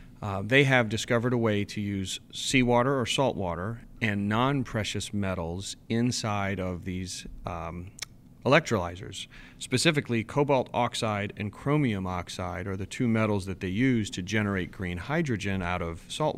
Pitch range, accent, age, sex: 95-125 Hz, American, 40-59, male